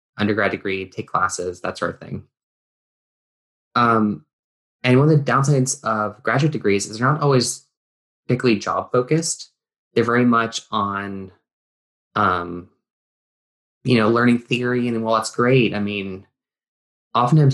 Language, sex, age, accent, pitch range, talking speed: English, male, 20-39, American, 100-125 Hz, 140 wpm